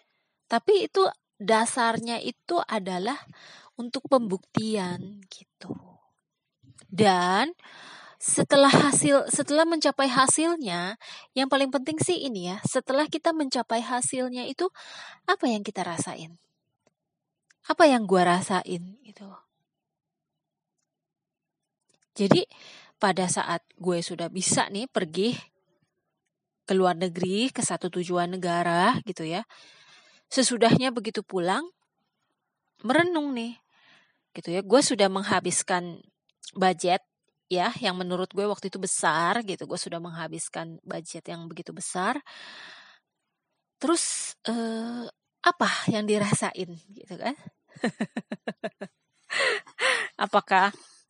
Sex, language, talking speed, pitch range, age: female, Indonesian, 100 wpm, 180-250 Hz, 20-39